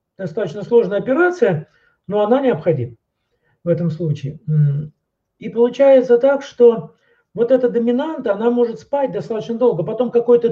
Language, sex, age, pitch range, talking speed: Russian, male, 40-59, 190-260 Hz, 130 wpm